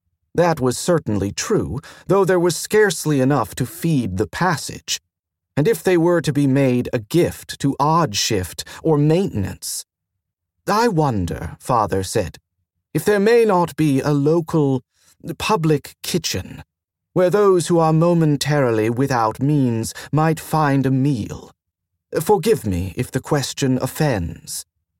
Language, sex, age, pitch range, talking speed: English, male, 40-59, 100-160 Hz, 135 wpm